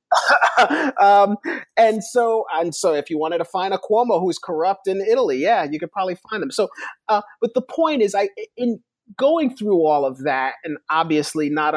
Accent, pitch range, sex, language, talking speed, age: American, 145-200 Hz, male, English, 195 wpm, 40-59